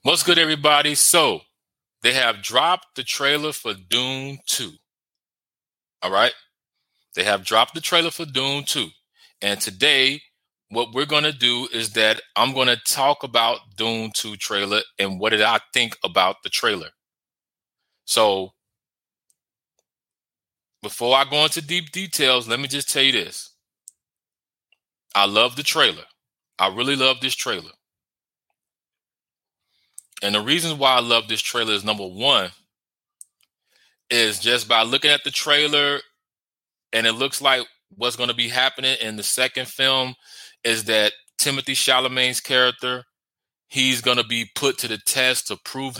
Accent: American